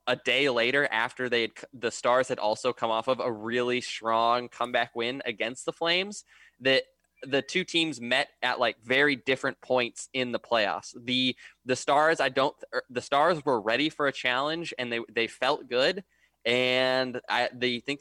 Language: English